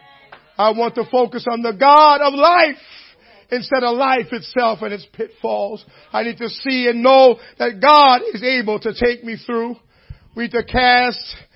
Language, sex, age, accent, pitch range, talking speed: English, male, 50-69, American, 230-265 Hz, 175 wpm